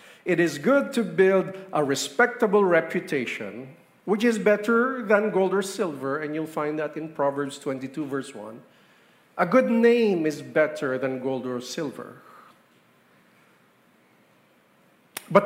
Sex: male